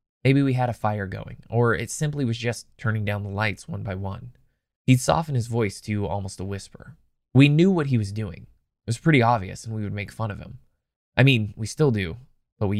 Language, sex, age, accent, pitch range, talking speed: English, male, 20-39, American, 105-135 Hz, 235 wpm